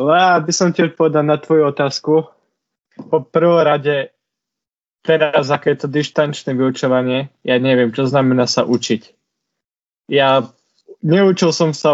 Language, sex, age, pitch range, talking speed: Slovak, male, 20-39, 120-145 Hz, 120 wpm